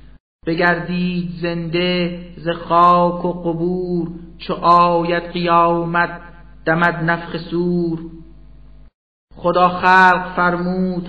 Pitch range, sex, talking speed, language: 170-175 Hz, male, 80 wpm, Persian